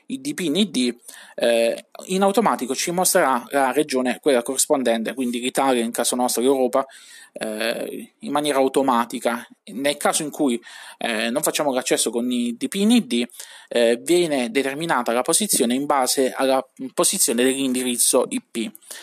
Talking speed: 140 wpm